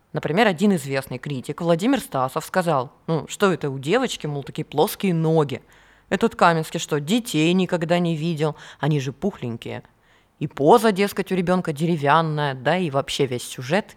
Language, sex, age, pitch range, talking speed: Russian, female, 20-39, 145-195 Hz, 160 wpm